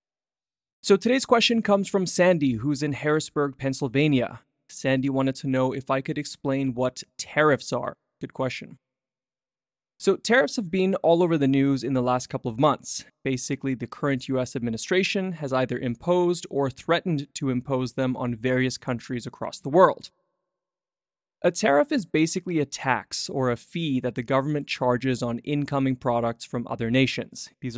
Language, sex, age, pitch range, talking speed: English, male, 20-39, 125-160 Hz, 165 wpm